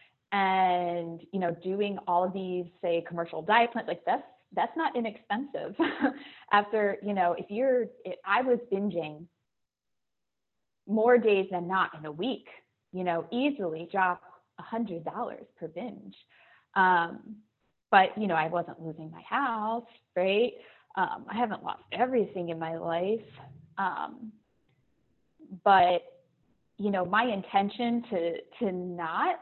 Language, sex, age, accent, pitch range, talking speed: English, female, 20-39, American, 170-220 Hz, 135 wpm